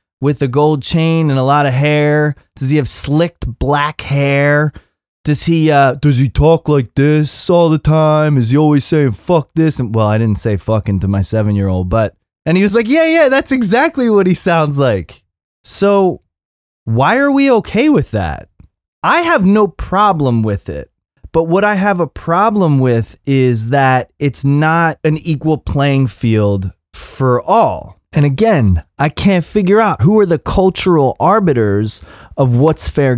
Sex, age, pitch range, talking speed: male, 20-39, 115-160 Hz, 175 wpm